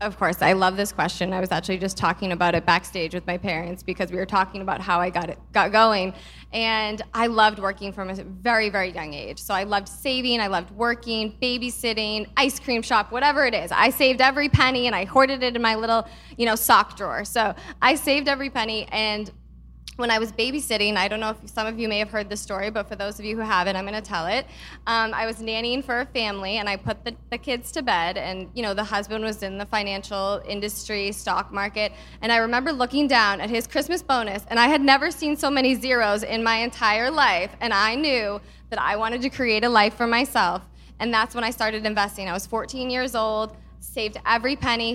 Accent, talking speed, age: American, 235 wpm, 20-39